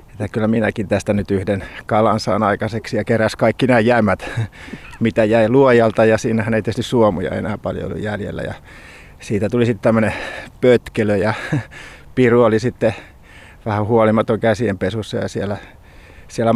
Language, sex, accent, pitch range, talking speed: Finnish, male, native, 105-120 Hz, 150 wpm